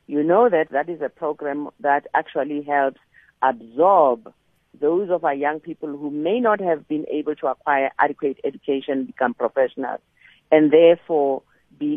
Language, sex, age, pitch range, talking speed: English, female, 40-59, 140-175 Hz, 155 wpm